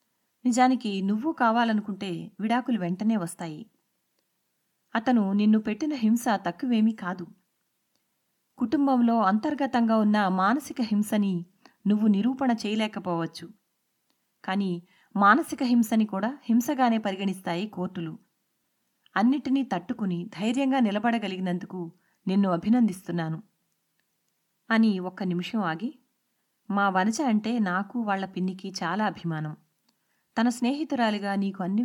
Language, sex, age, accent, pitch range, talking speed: Telugu, female, 30-49, native, 185-235 Hz, 90 wpm